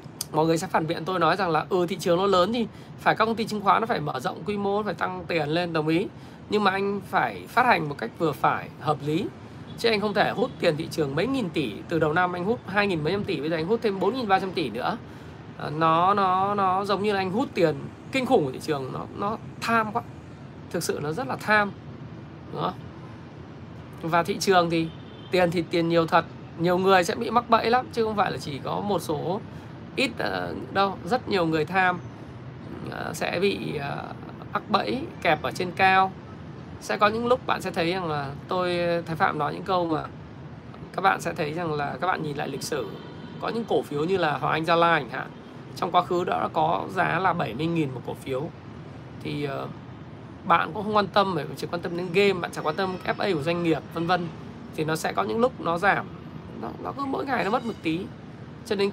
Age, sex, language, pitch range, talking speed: 20-39, male, Vietnamese, 160-200 Hz, 240 wpm